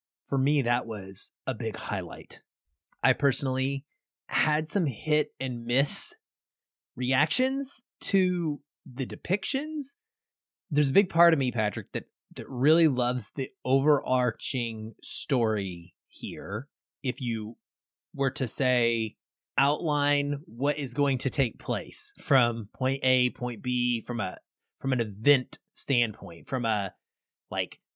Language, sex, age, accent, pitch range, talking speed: English, male, 20-39, American, 115-145 Hz, 125 wpm